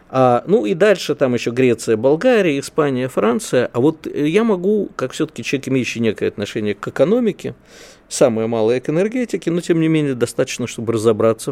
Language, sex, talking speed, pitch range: Russian, male, 170 wpm, 115-160 Hz